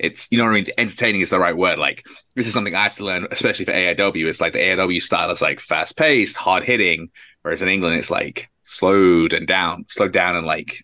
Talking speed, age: 245 wpm, 20-39